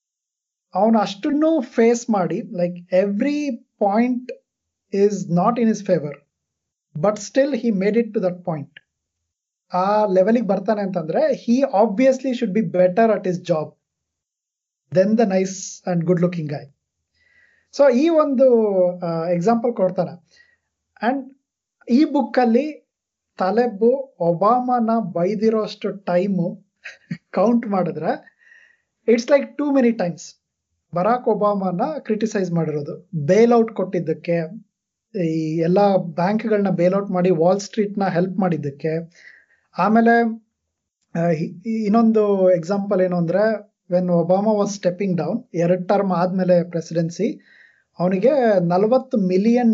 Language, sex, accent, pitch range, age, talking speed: Kannada, male, native, 175-230 Hz, 20-39, 110 wpm